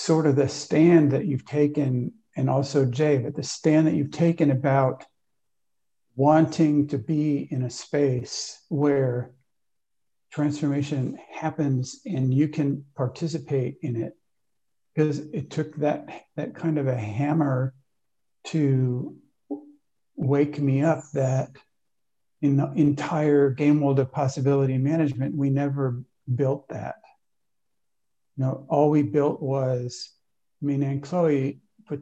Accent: American